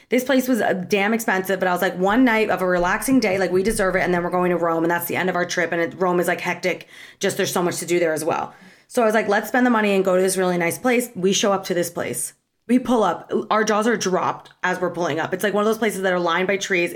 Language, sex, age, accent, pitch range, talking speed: English, female, 30-49, American, 185-245 Hz, 320 wpm